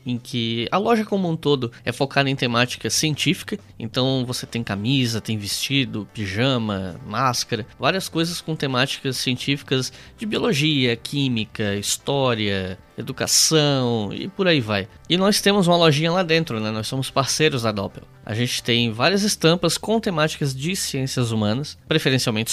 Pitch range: 120-160 Hz